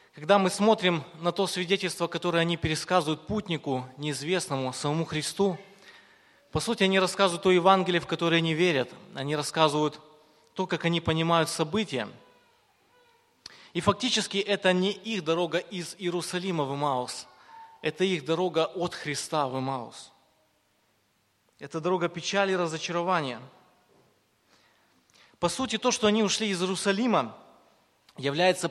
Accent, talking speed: native, 130 wpm